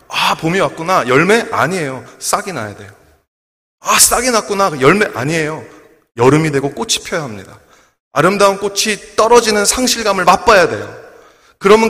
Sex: male